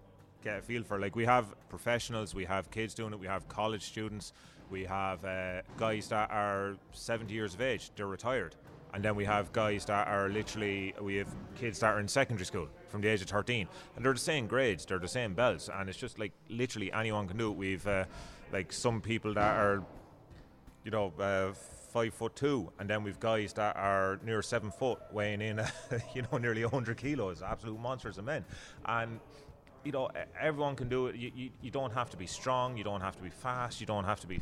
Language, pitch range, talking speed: English, 95-115 Hz, 225 wpm